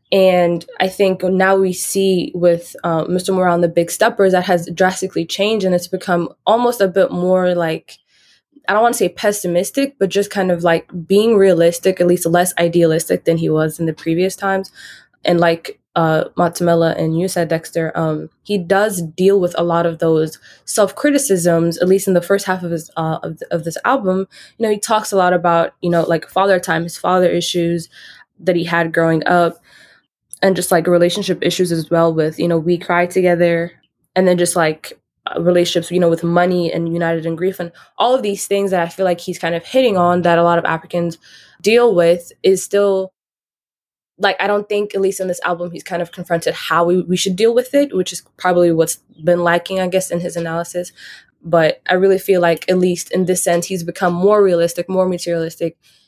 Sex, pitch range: female, 170-190 Hz